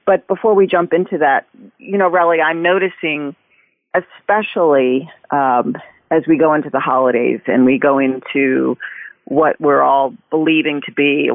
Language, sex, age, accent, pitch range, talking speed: English, female, 40-59, American, 130-160 Hz, 160 wpm